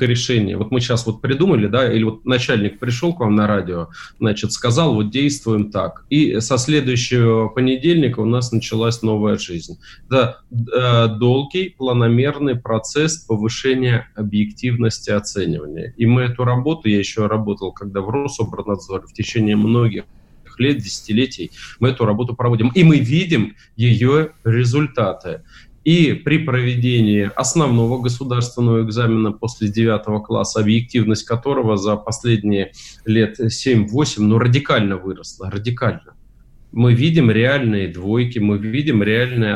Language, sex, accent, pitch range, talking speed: Russian, male, native, 110-125 Hz, 130 wpm